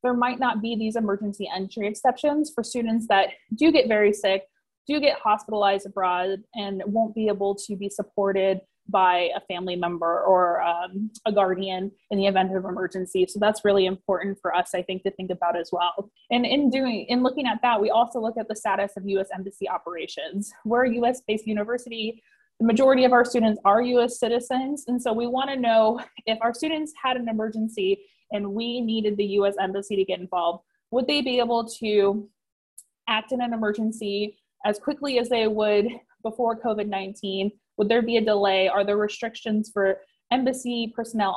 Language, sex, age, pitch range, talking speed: English, female, 20-39, 195-240 Hz, 185 wpm